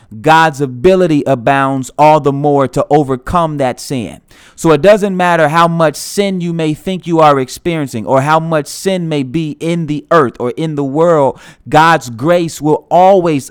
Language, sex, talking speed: English, male, 180 wpm